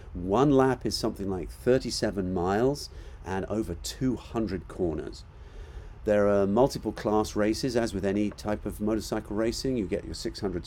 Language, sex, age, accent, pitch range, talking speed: English, male, 40-59, British, 85-110 Hz, 150 wpm